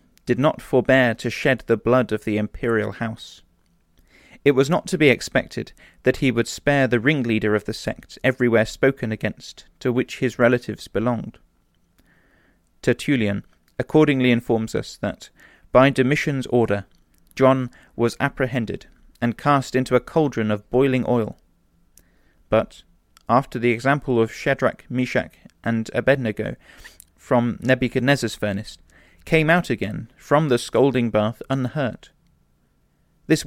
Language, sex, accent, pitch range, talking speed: English, male, British, 105-130 Hz, 130 wpm